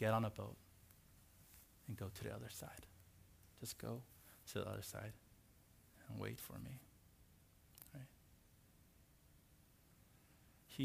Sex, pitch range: male, 105-150 Hz